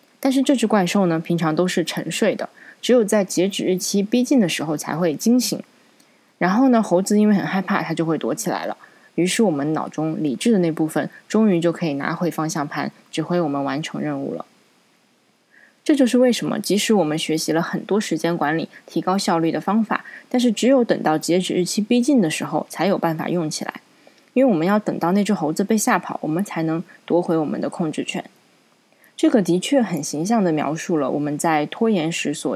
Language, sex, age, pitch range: Chinese, female, 20-39, 160-225 Hz